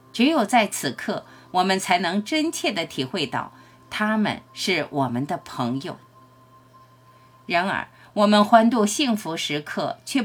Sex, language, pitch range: female, Chinese, 150-235 Hz